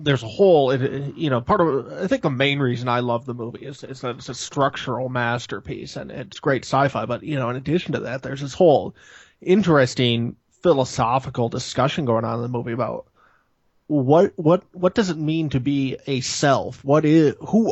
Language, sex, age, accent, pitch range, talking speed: English, male, 20-39, American, 130-155 Hz, 200 wpm